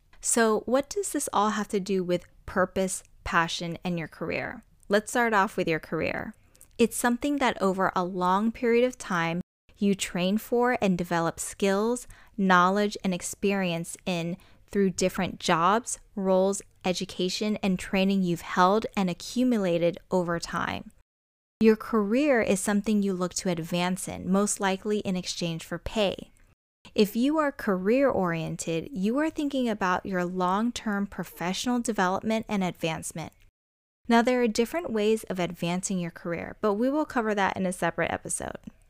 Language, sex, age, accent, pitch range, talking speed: English, female, 20-39, American, 180-225 Hz, 155 wpm